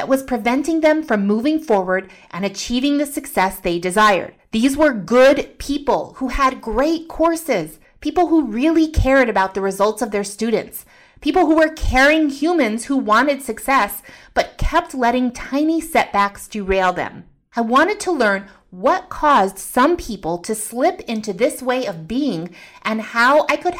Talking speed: 165 wpm